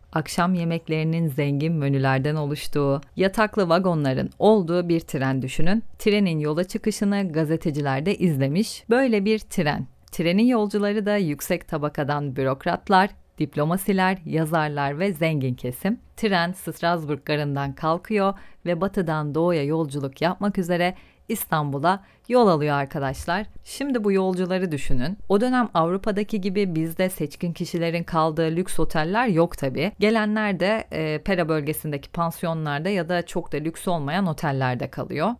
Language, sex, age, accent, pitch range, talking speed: Turkish, female, 40-59, native, 150-195 Hz, 125 wpm